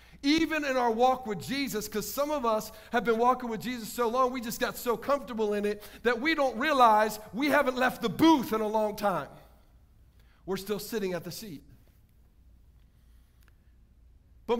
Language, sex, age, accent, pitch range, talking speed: English, male, 50-69, American, 195-260 Hz, 180 wpm